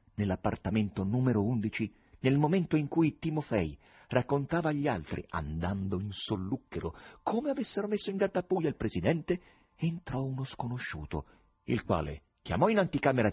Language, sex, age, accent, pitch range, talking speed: Italian, male, 40-59, native, 95-120 Hz, 130 wpm